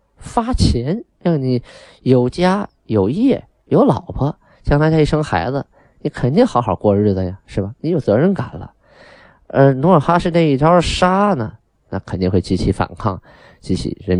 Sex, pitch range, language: male, 90-120 Hz, Chinese